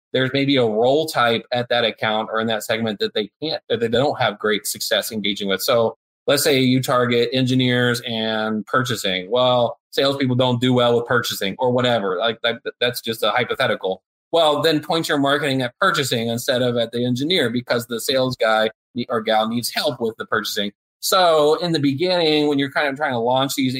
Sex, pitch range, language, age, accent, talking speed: male, 115-140 Hz, English, 30-49, American, 200 wpm